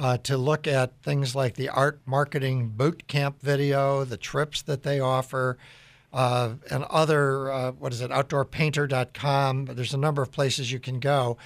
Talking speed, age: 175 wpm, 60-79